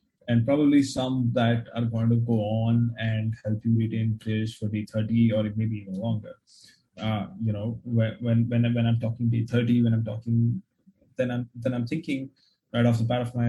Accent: Indian